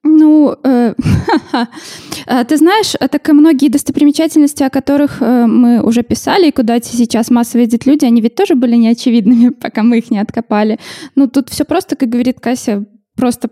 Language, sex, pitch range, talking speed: Russian, female, 230-285 Hz, 175 wpm